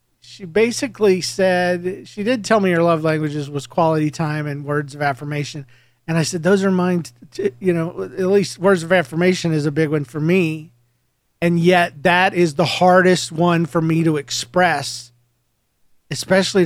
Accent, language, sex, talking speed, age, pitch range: American, English, male, 180 wpm, 40-59, 130-180 Hz